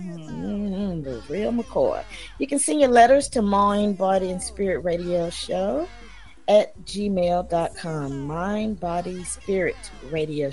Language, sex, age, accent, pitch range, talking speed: English, female, 40-59, American, 160-220 Hz, 125 wpm